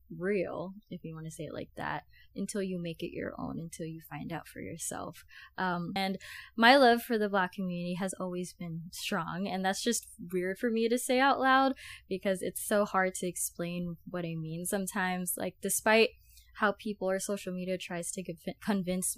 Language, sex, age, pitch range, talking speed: English, female, 10-29, 175-205 Hz, 195 wpm